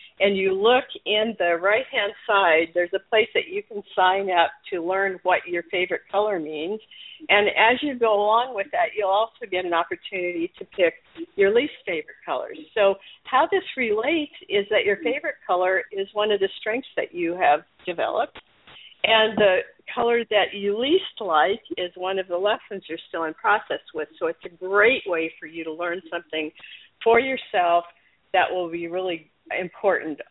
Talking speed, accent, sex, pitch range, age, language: 180 wpm, American, female, 180-245 Hz, 60-79, English